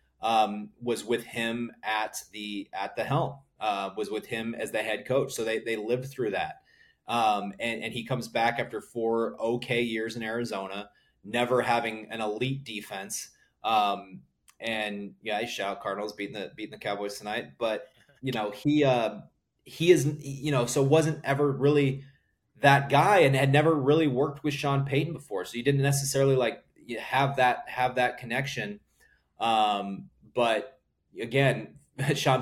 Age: 20-39